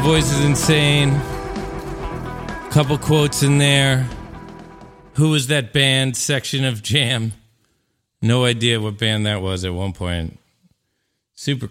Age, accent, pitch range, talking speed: 40-59, American, 95-130 Hz, 130 wpm